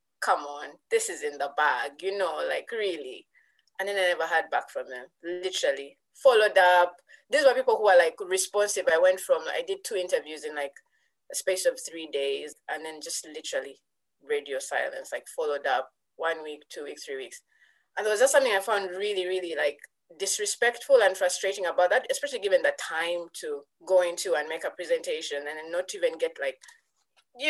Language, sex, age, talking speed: English, female, 20-39, 195 wpm